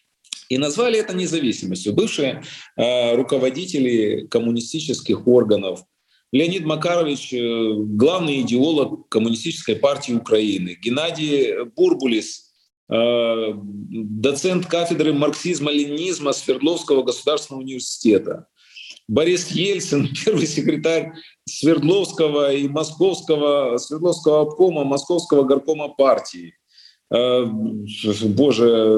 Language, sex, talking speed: Russian, male, 80 wpm